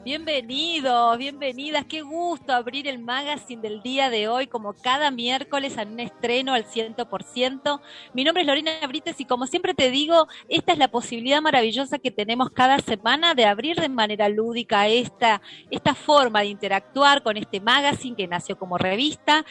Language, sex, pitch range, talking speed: Spanish, female, 205-270 Hz, 170 wpm